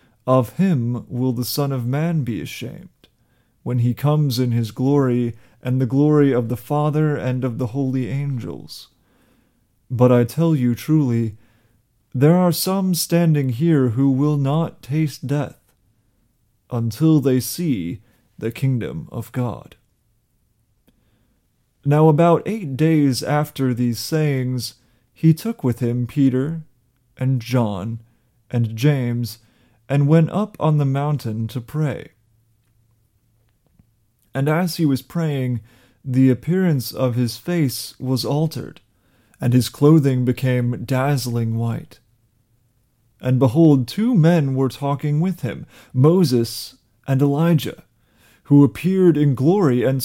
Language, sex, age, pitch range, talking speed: English, male, 30-49, 120-150 Hz, 125 wpm